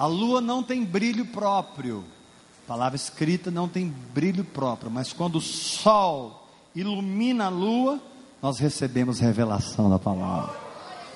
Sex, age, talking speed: male, 40-59, 135 wpm